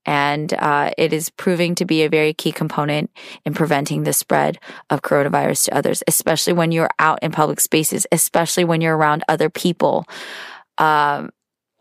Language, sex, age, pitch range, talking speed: English, female, 20-39, 155-180 Hz, 170 wpm